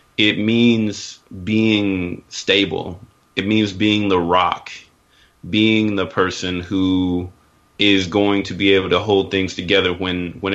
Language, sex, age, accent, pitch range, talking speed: English, male, 30-49, American, 90-100 Hz, 135 wpm